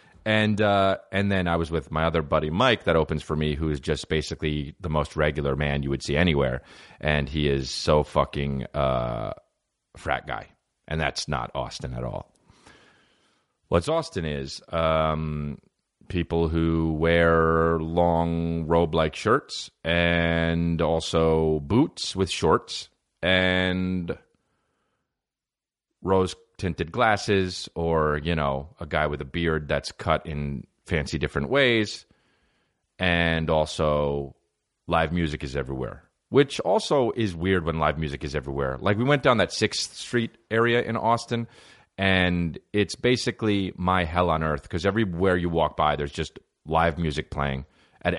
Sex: male